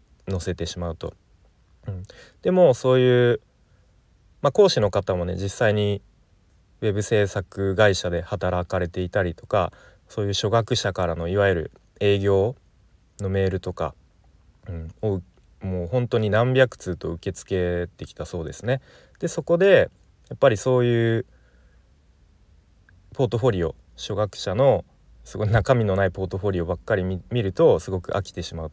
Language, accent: Japanese, native